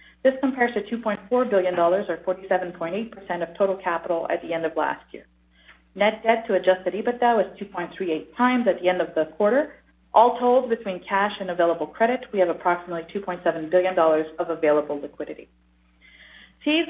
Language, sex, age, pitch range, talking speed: English, female, 40-59, 180-230 Hz, 165 wpm